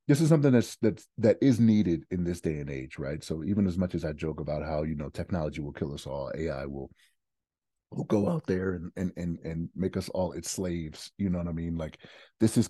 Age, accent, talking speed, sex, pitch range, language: 30-49, American, 250 wpm, male, 80-100 Hz, English